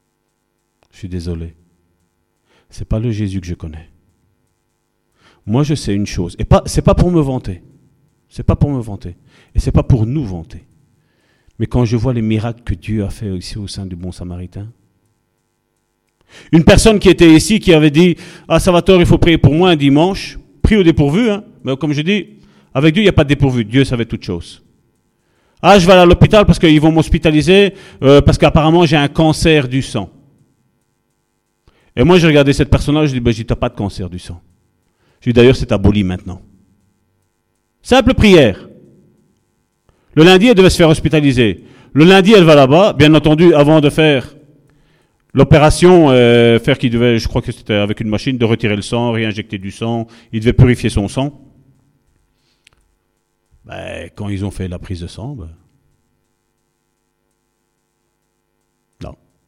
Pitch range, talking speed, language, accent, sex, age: 100-155 Hz, 185 wpm, French, French, male, 40-59